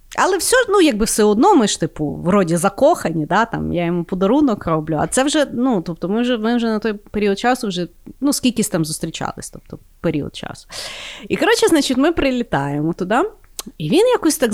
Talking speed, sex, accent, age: 200 wpm, female, native, 30-49